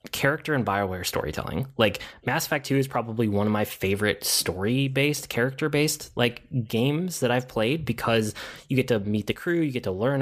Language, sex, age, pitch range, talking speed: English, male, 20-39, 110-135 Hz, 200 wpm